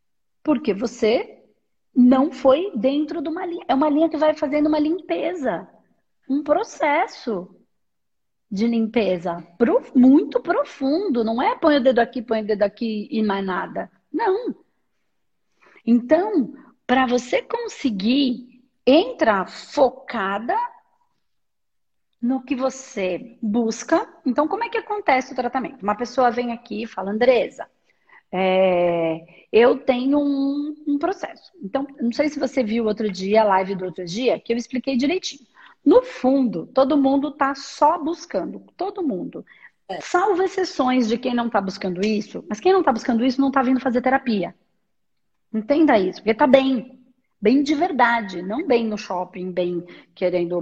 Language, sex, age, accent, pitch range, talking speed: Portuguese, female, 40-59, Brazilian, 210-295 Hz, 150 wpm